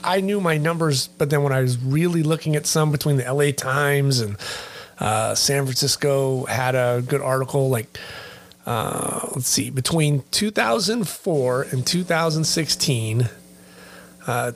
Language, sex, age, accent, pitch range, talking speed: English, male, 30-49, American, 125-175 Hz, 135 wpm